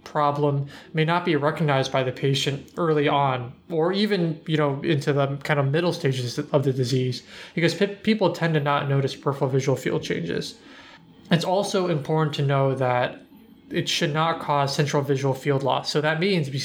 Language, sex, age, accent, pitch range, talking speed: English, male, 20-39, American, 135-160 Hz, 190 wpm